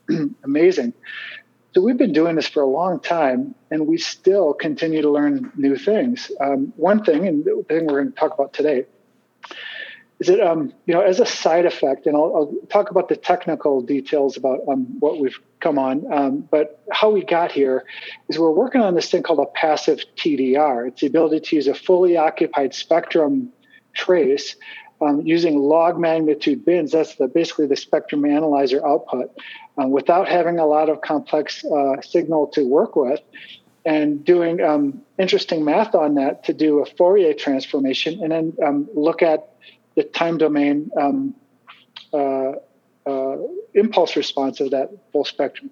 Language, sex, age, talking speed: English, male, 40-59, 170 wpm